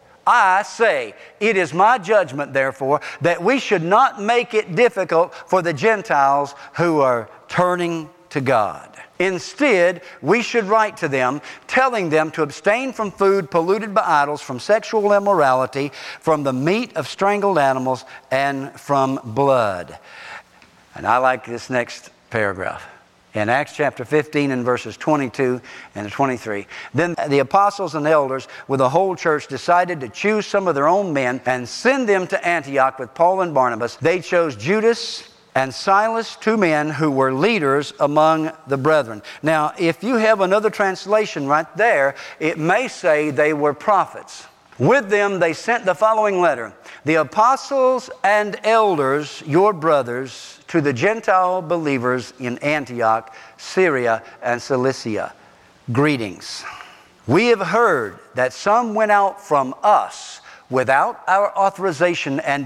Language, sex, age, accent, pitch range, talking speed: English, male, 60-79, American, 135-195 Hz, 145 wpm